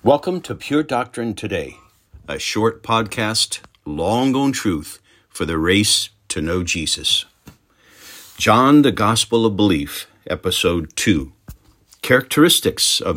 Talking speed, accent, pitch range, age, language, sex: 120 wpm, American, 90-115 Hz, 60-79, English, male